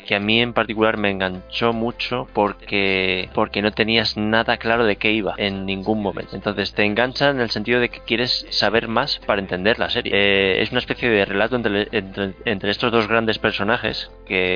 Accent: Spanish